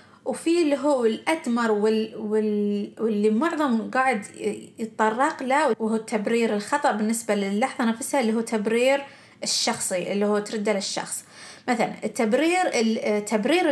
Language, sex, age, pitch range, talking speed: Arabic, female, 30-49, 215-265 Hz, 125 wpm